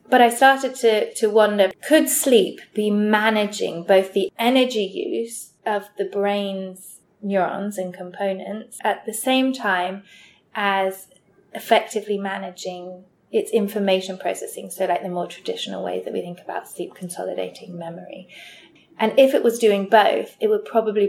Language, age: English, 20-39